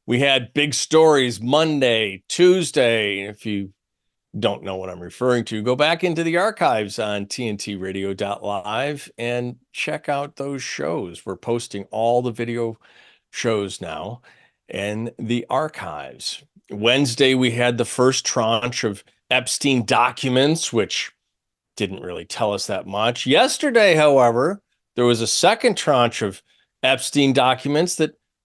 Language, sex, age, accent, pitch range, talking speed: English, male, 40-59, American, 110-155 Hz, 135 wpm